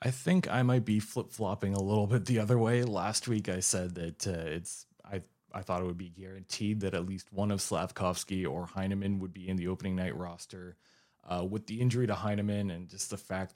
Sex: male